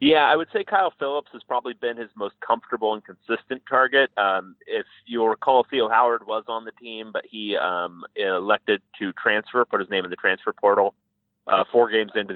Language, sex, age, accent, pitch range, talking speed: English, male, 30-49, American, 100-130 Hz, 205 wpm